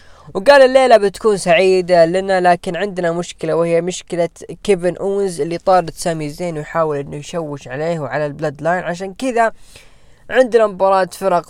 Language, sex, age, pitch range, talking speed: Arabic, female, 10-29, 145-200 Hz, 145 wpm